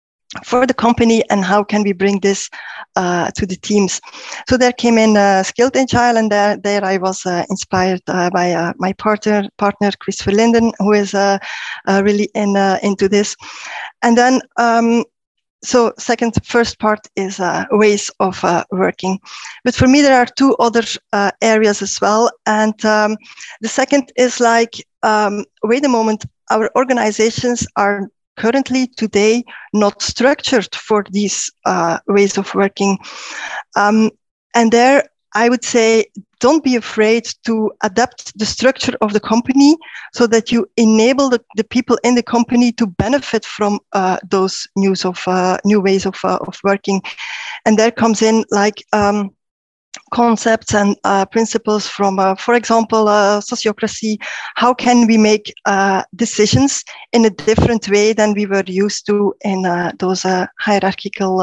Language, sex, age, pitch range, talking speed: English, female, 20-39, 200-235 Hz, 165 wpm